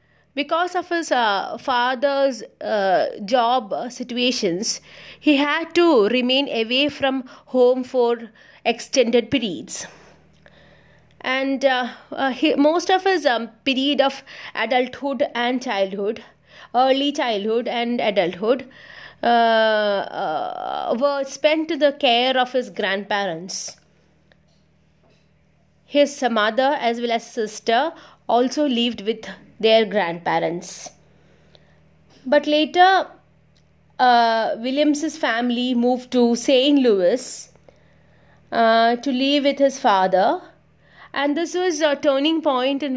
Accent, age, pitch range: Indian, 30-49, 235-290 Hz